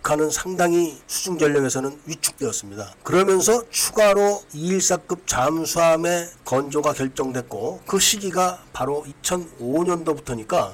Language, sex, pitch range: Korean, male, 145-190 Hz